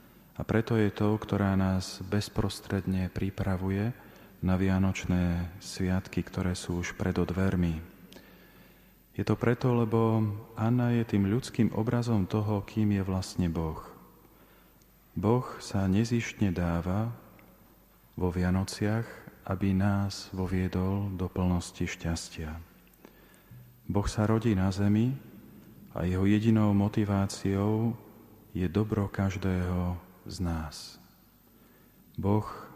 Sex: male